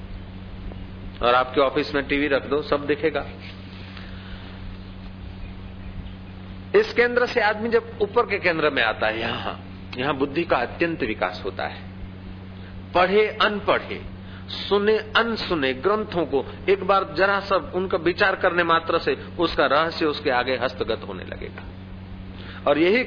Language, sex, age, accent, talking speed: Hindi, male, 40-59, native, 135 wpm